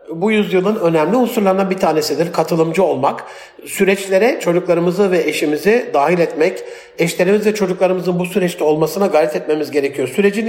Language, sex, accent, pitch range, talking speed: Turkish, male, native, 180-225 Hz, 130 wpm